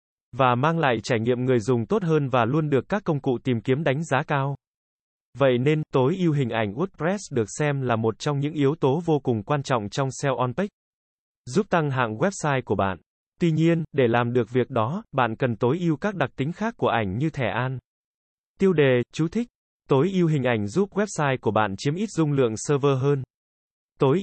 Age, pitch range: 20-39, 125-160 Hz